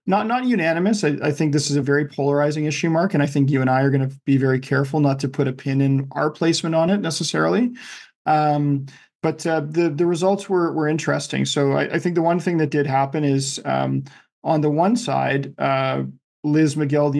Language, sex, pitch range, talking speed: English, male, 135-155 Hz, 225 wpm